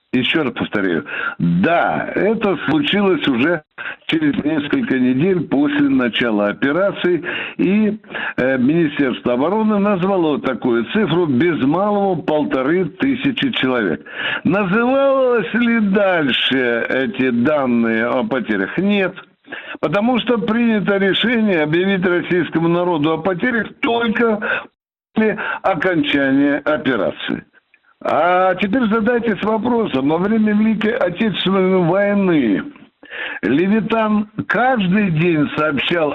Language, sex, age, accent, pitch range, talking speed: Russian, male, 60-79, native, 170-235 Hz, 100 wpm